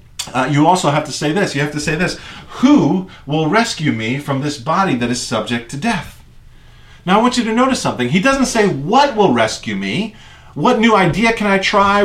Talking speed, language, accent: 220 wpm, English, American